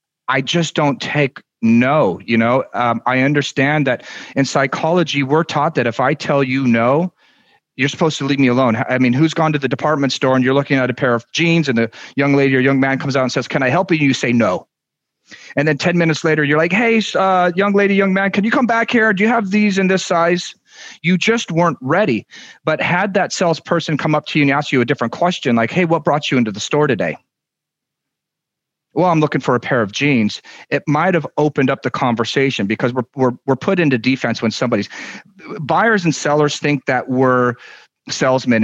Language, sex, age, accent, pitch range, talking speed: English, male, 40-59, American, 125-160 Hz, 220 wpm